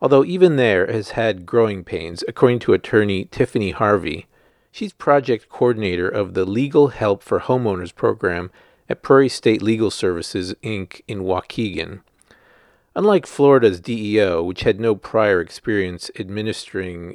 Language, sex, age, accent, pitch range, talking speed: English, male, 40-59, American, 95-140 Hz, 135 wpm